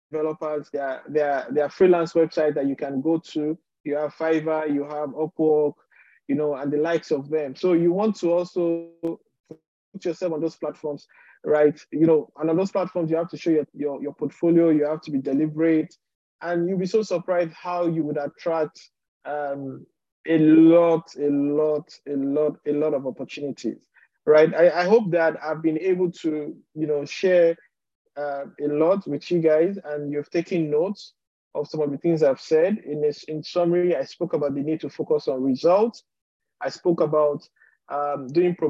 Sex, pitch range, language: male, 150-170 Hz, English